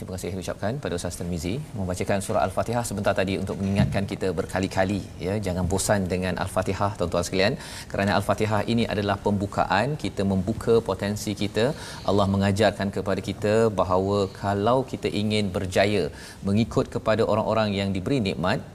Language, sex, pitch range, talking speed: Malayalam, male, 95-110 Hz, 150 wpm